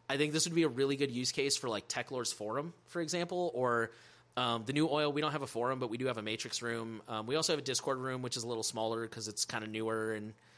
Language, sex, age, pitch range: English, male, 30-49, 115-155 Hz